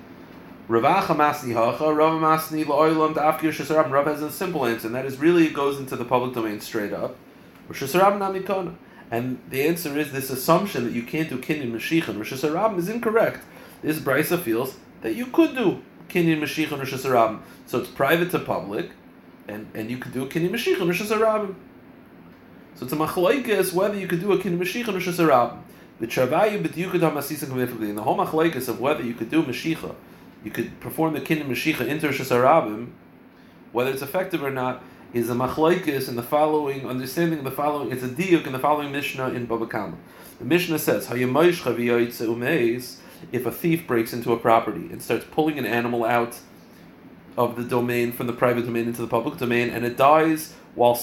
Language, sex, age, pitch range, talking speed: English, male, 30-49, 120-160 Hz, 185 wpm